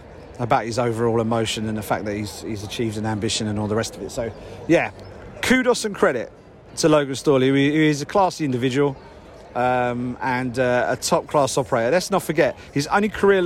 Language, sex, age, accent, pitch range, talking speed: English, male, 40-59, British, 120-155 Hz, 195 wpm